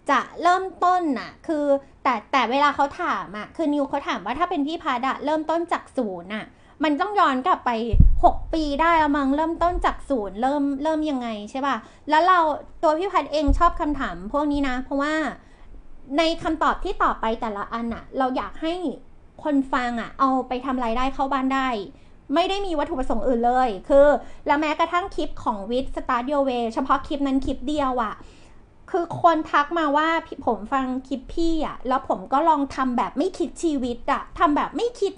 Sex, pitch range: female, 270-345 Hz